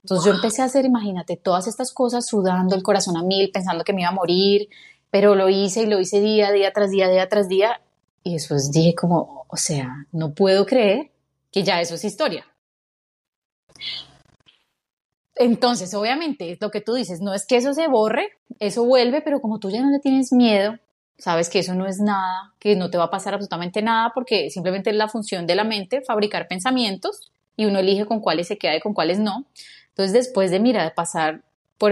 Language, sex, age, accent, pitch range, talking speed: Spanish, female, 20-39, Colombian, 175-220 Hz, 210 wpm